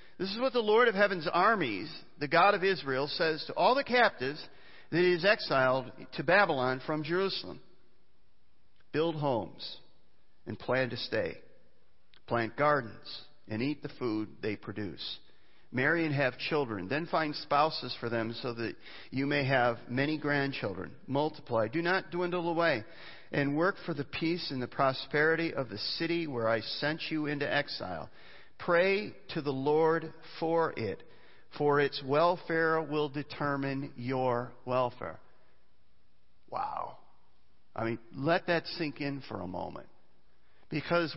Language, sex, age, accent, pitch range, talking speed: English, male, 50-69, American, 135-170 Hz, 145 wpm